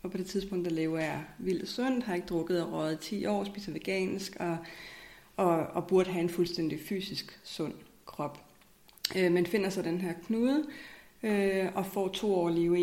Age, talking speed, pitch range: 30-49, 195 wpm, 170-205 Hz